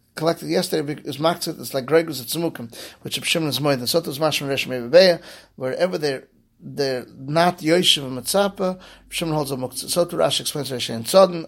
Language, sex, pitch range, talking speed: English, male, 135-170 Hz, 185 wpm